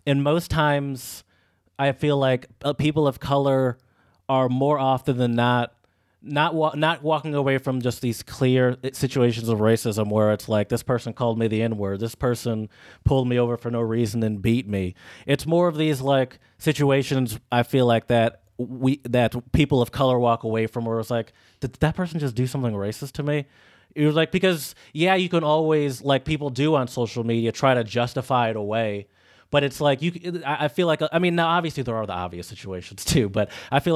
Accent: American